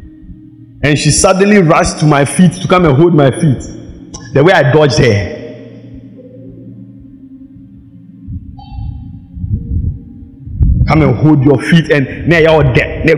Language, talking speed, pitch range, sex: English, 110 wpm, 135-195 Hz, male